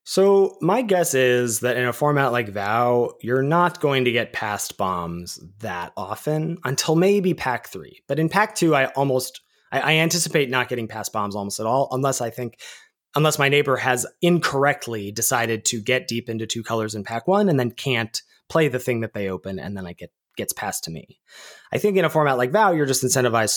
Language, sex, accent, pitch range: English, male, American, 110-145 Hz